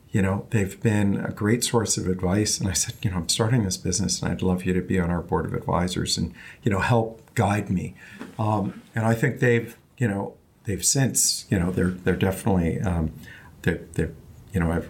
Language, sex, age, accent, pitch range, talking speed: English, male, 50-69, American, 95-120 Hz, 220 wpm